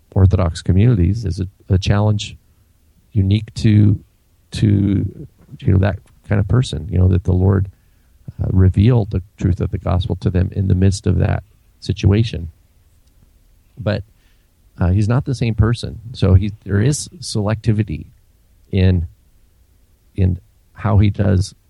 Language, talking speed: English, 145 wpm